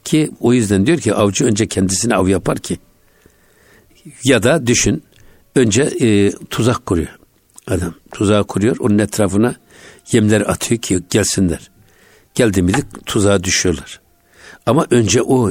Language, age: Turkish, 60-79